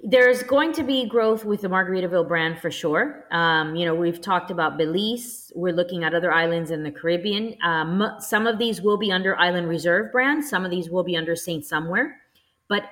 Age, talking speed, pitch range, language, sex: 30-49, 210 wpm, 170-215 Hz, English, female